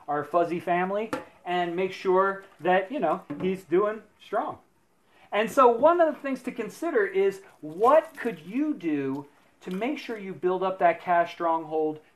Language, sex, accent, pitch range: English, male, American, 170-250 Hz